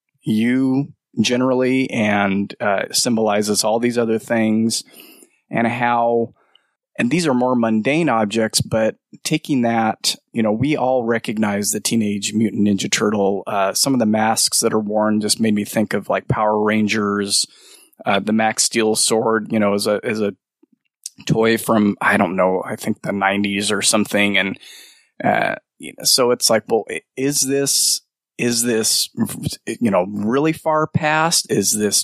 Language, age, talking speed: English, 20-39, 160 wpm